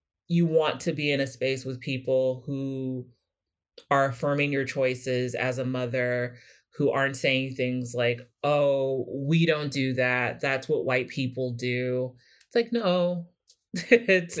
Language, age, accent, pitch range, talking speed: English, 30-49, American, 125-140 Hz, 150 wpm